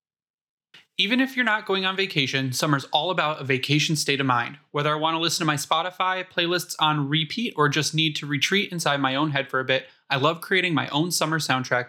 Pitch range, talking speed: 135-160 Hz, 225 wpm